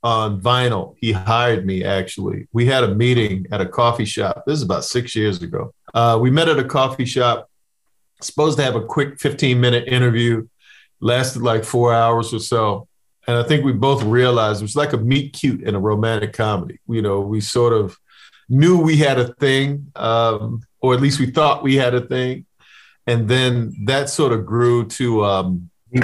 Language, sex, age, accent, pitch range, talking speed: English, male, 40-59, American, 110-135 Hz, 200 wpm